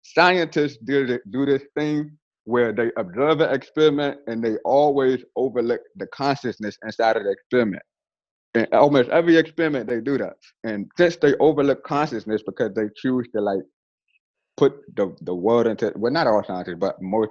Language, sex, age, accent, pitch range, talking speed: English, male, 30-49, American, 110-145 Hz, 165 wpm